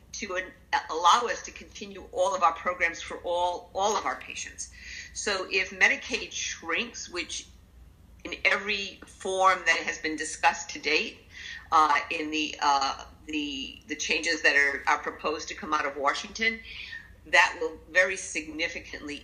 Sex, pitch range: female, 155-205 Hz